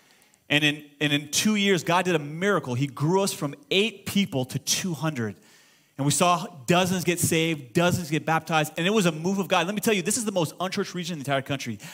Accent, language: American, English